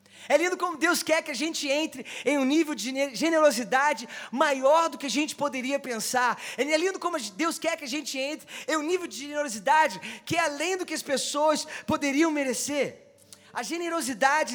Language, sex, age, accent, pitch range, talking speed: Portuguese, male, 20-39, Brazilian, 250-310 Hz, 190 wpm